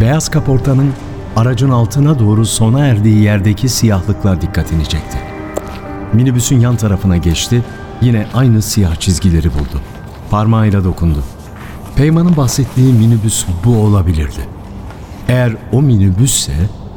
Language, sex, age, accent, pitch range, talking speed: Turkish, male, 60-79, native, 95-120 Hz, 105 wpm